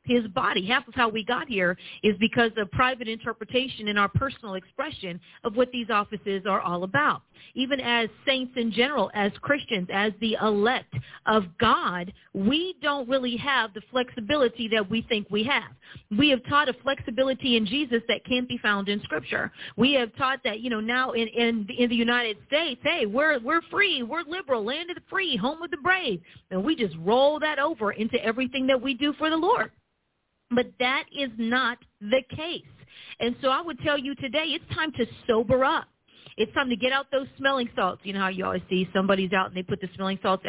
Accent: American